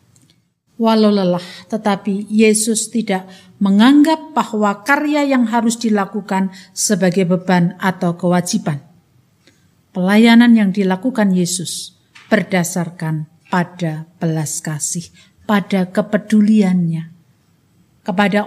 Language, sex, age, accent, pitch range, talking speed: Indonesian, female, 50-69, native, 175-230 Hz, 85 wpm